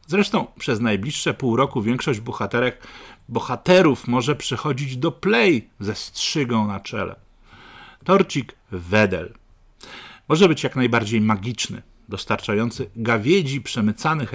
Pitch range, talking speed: 110-145 Hz, 110 wpm